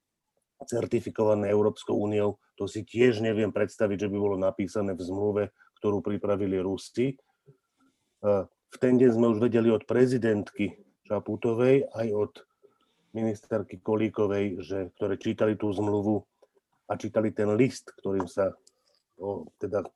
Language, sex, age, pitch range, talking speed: Slovak, male, 40-59, 105-120 Hz, 130 wpm